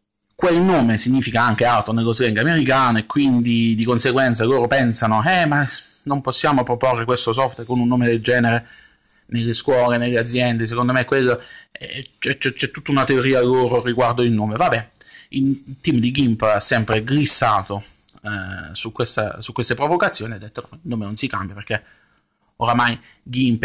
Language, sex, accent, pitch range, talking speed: Italian, male, native, 115-140 Hz, 180 wpm